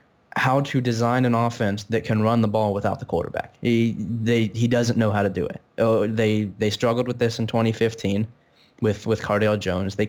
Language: English